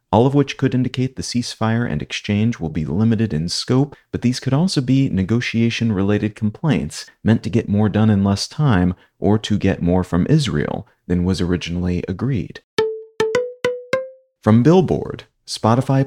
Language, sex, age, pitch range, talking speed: English, male, 30-49, 100-125 Hz, 155 wpm